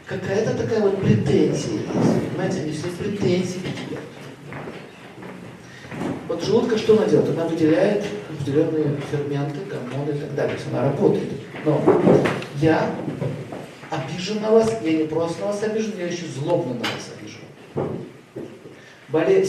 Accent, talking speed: native, 135 wpm